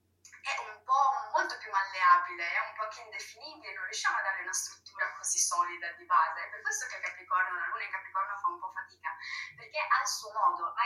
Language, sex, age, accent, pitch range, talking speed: Italian, female, 20-39, native, 190-280 Hz, 220 wpm